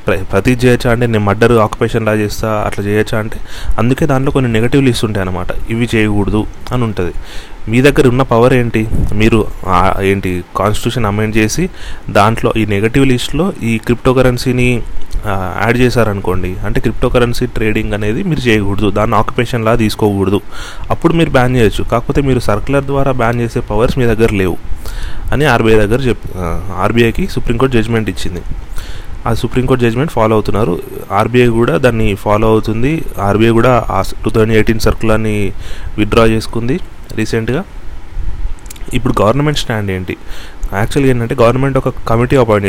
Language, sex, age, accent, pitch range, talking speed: Telugu, male, 30-49, native, 100-125 Hz, 145 wpm